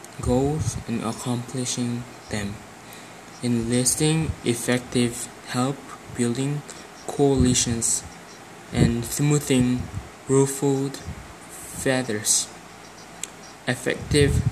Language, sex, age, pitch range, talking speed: English, male, 20-39, 115-135 Hz, 55 wpm